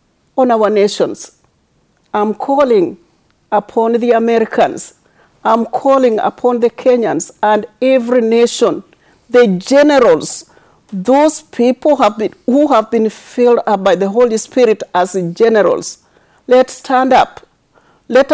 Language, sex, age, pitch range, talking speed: English, female, 50-69, 215-255 Hz, 120 wpm